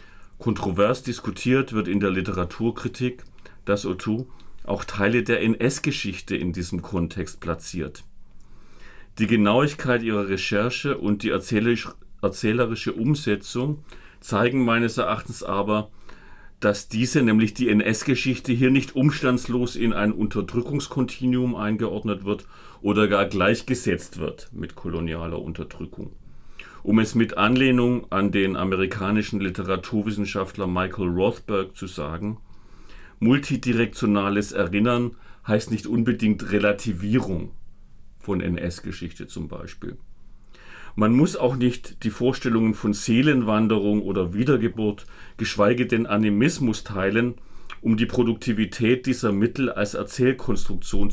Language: German